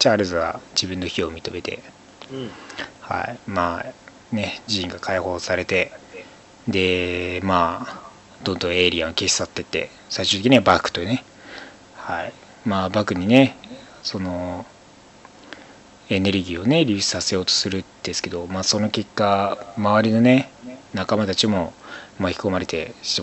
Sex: male